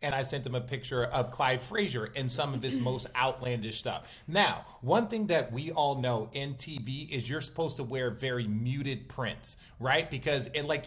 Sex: male